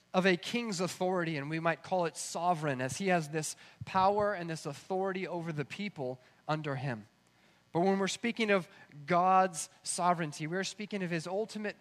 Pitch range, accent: 155-195 Hz, American